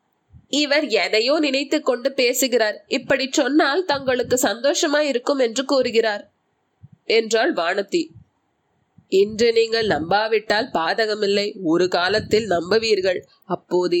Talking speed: 95 wpm